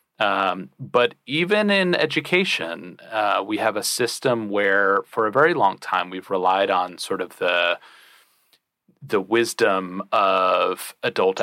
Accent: American